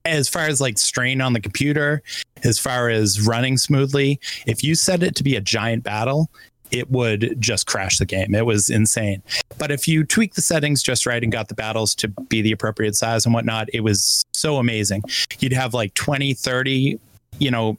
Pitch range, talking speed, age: 110-135 Hz, 205 wpm, 20-39